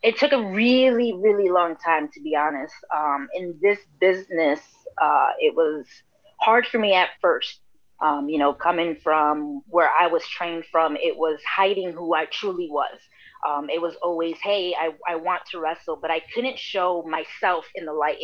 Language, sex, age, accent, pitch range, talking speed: English, female, 20-39, American, 165-210 Hz, 190 wpm